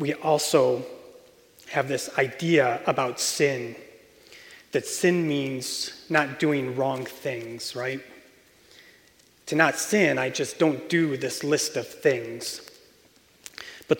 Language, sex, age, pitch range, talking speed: English, male, 30-49, 145-195 Hz, 115 wpm